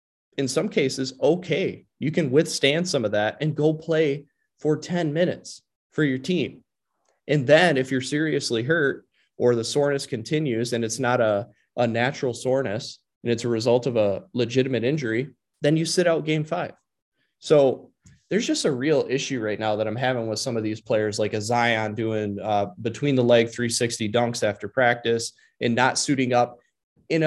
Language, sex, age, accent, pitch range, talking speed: English, male, 20-39, American, 115-150 Hz, 185 wpm